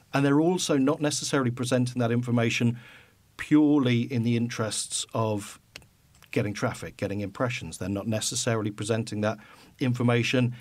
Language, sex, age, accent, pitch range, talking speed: English, male, 40-59, British, 110-135 Hz, 130 wpm